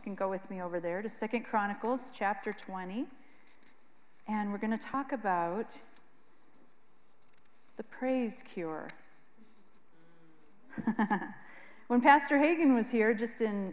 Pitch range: 195-230 Hz